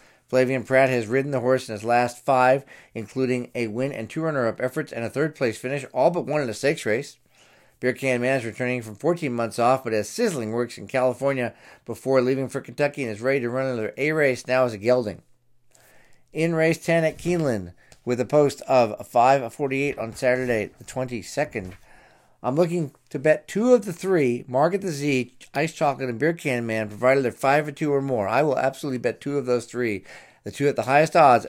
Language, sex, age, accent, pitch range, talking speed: English, male, 50-69, American, 115-140 Hz, 210 wpm